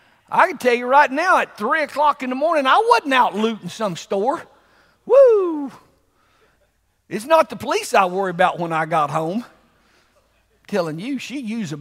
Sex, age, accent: male, 50-69, American